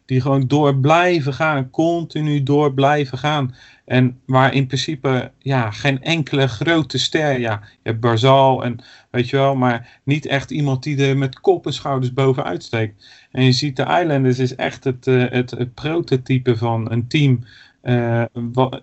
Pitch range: 125-140 Hz